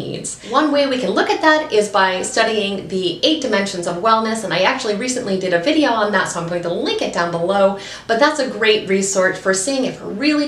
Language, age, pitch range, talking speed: English, 30-49, 175-245 Hz, 240 wpm